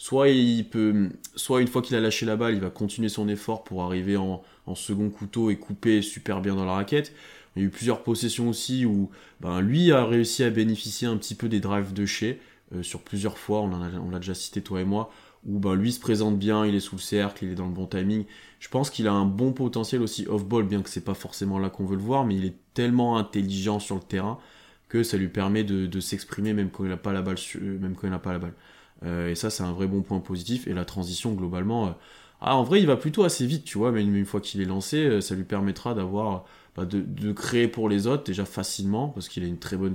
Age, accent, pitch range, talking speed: 20-39, French, 95-120 Hz, 255 wpm